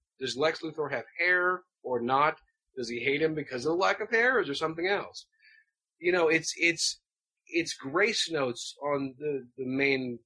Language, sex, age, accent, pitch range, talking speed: English, male, 30-49, American, 130-160 Hz, 195 wpm